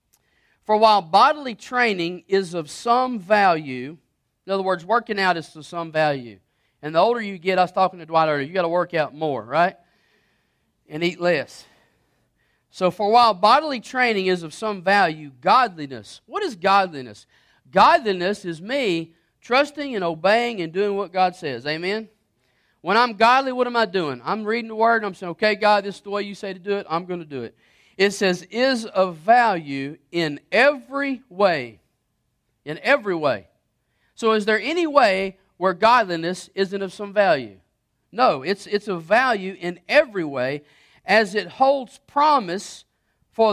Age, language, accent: 40-59, English, American